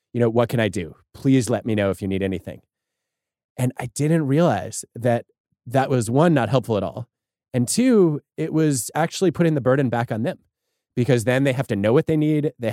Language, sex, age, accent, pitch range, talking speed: English, male, 20-39, American, 110-150 Hz, 220 wpm